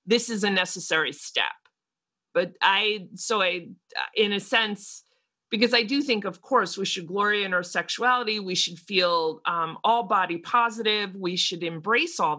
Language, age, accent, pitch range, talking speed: English, 30-49, American, 175-220 Hz, 170 wpm